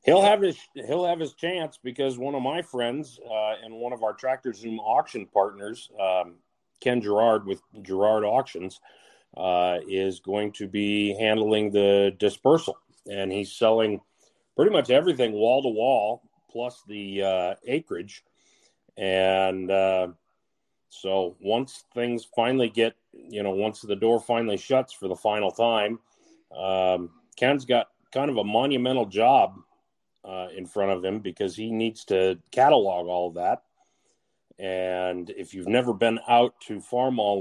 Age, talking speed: 40-59, 145 wpm